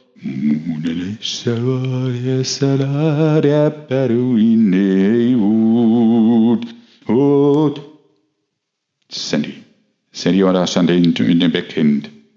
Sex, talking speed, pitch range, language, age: male, 55 wpm, 85-130 Hz, German, 60-79